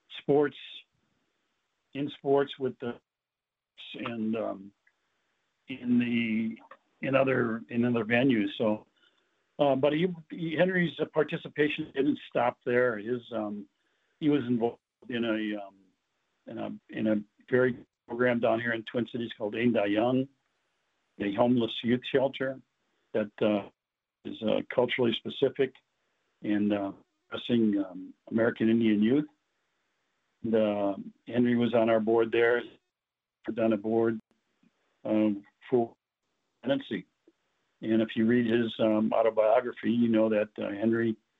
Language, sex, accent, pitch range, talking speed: English, male, American, 110-130 Hz, 130 wpm